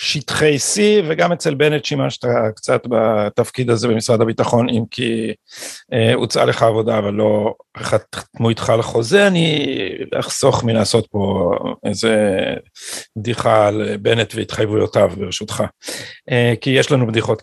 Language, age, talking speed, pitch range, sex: Hebrew, 50-69, 130 wpm, 120-165 Hz, male